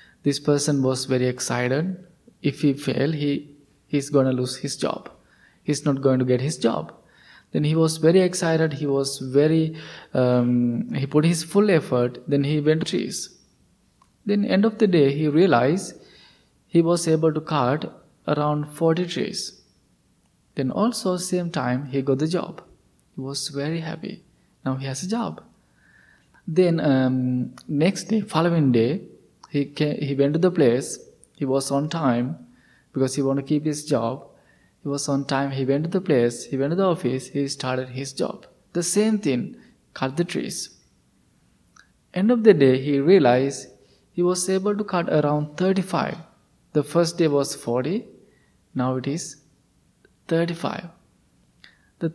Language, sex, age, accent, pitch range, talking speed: English, male, 20-39, Indian, 135-170 Hz, 165 wpm